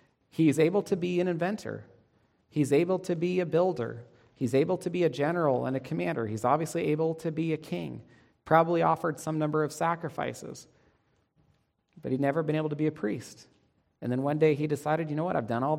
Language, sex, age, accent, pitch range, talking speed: English, male, 40-59, American, 120-160 Hz, 210 wpm